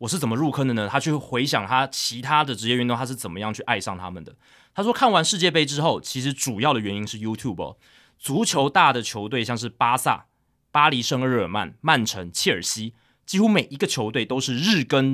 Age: 20-39